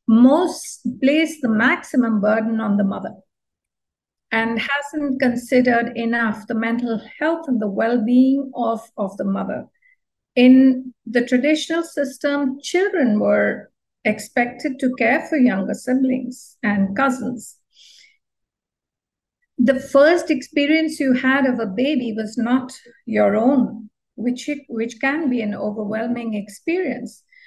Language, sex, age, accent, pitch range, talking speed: English, female, 50-69, Indian, 215-265 Hz, 125 wpm